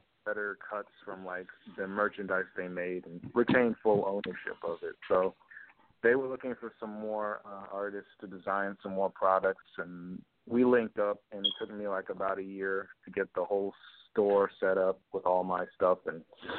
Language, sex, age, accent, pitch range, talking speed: English, male, 30-49, American, 95-120 Hz, 190 wpm